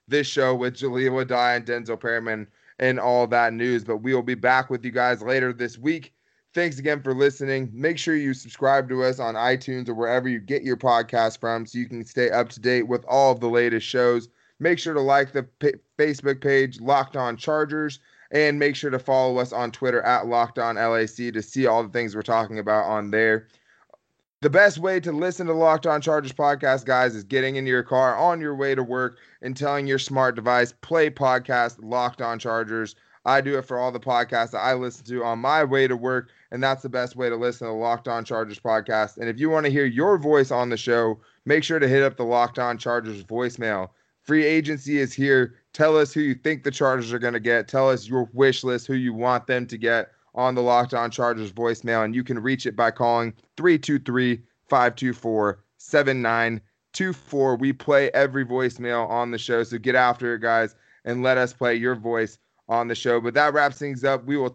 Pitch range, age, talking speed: 120-135 Hz, 20-39, 220 wpm